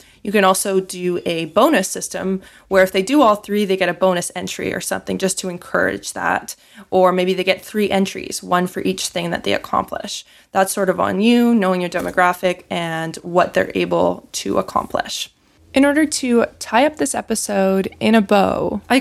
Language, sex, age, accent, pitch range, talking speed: English, female, 20-39, American, 185-230 Hz, 195 wpm